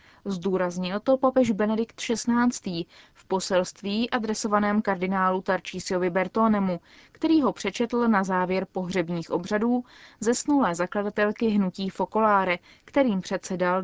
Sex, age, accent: female, 20-39, native